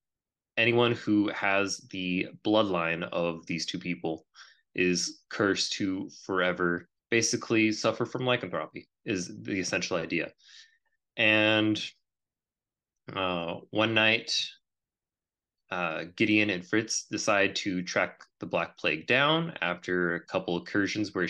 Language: English